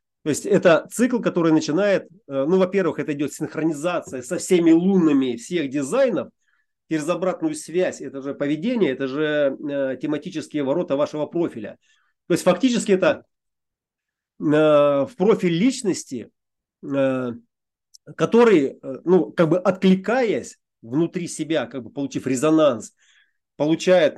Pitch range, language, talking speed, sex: 145-195 Hz, Russian, 115 wpm, male